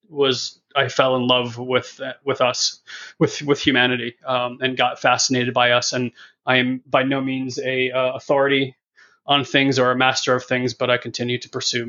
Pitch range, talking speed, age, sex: 125-135 Hz, 190 wpm, 30-49, male